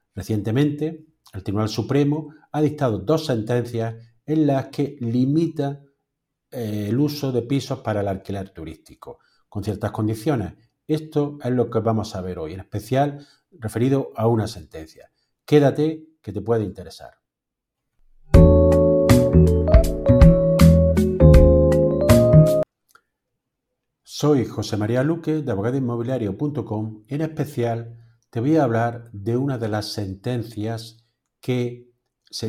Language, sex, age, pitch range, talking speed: Spanish, male, 50-69, 105-135 Hz, 115 wpm